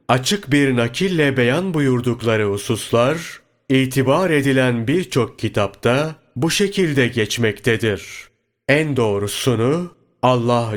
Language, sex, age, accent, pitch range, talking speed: Turkish, male, 30-49, native, 110-140 Hz, 90 wpm